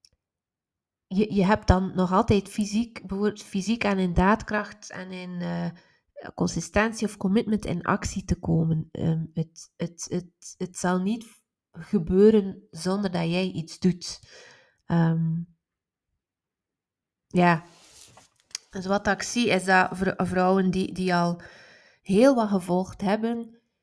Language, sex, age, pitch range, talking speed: Dutch, female, 20-39, 175-205 Hz, 130 wpm